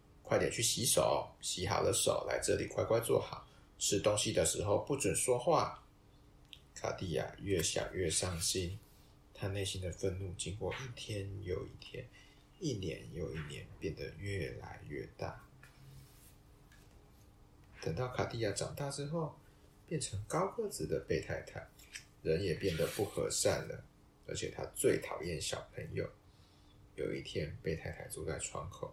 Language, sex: Chinese, male